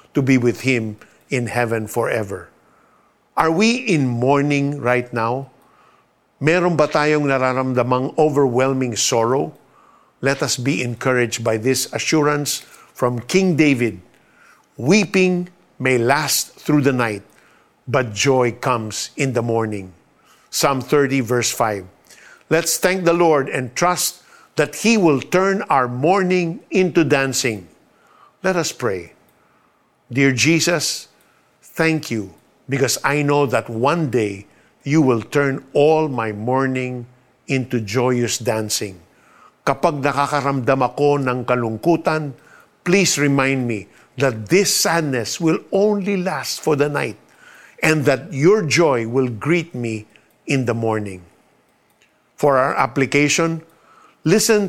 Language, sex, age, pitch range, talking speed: Filipino, male, 50-69, 125-160 Hz, 120 wpm